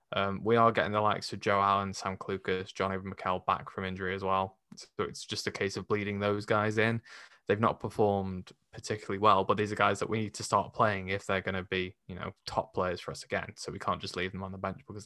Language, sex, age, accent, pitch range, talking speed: English, male, 20-39, British, 95-110 Hz, 260 wpm